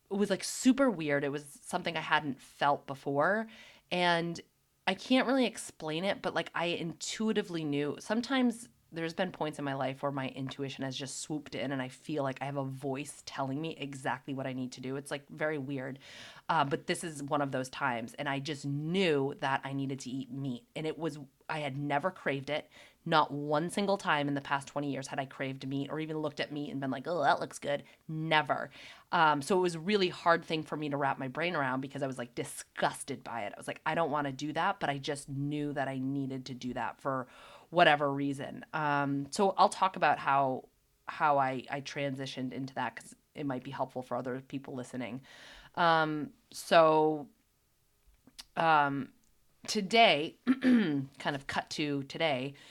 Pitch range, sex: 135-165 Hz, female